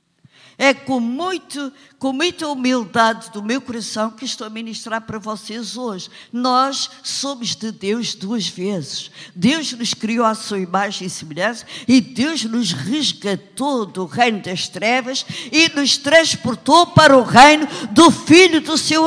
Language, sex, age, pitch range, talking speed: Portuguese, female, 50-69, 215-290 Hz, 150 wpm